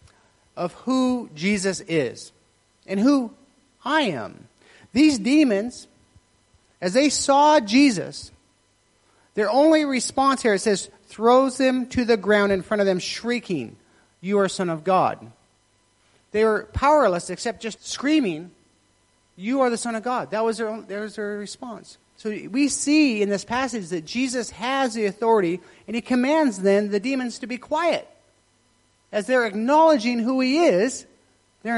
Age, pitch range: 40-59, 155-245 Hz